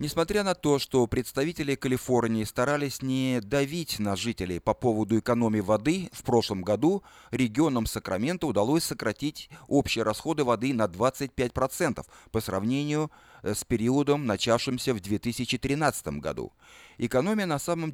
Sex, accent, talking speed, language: male, native, 125 wpm, Russian